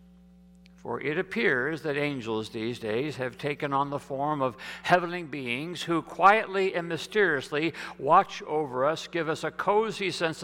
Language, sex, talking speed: English, male, 155 wpm